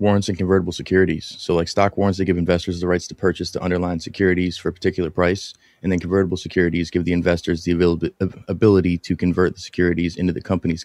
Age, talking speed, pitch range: 20-39, 220 wpm, 90-100 Hz